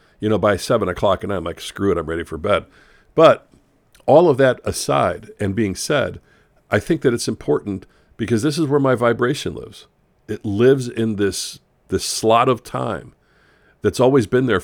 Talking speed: 190 wpm